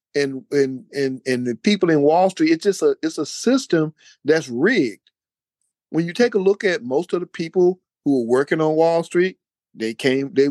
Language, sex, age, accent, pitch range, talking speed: English, male, 50-69, American, 150-190 Hz, 190 wpm